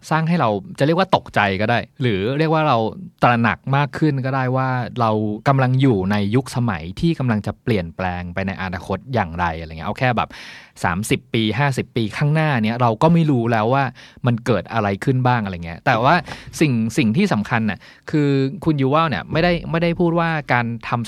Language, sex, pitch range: Thai, male, 110-155 Hz